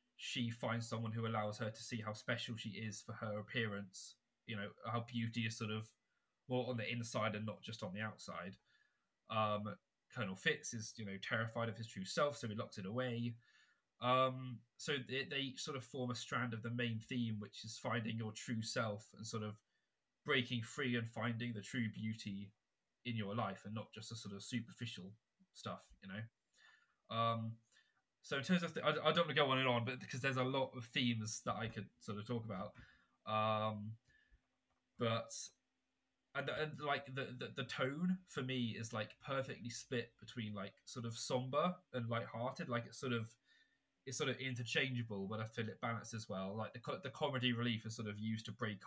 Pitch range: 110-125 Hz